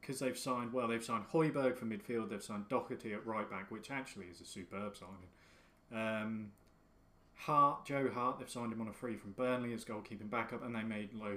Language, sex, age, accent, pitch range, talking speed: English, male, 30-49, British, 105-125 Hz, 210 wpm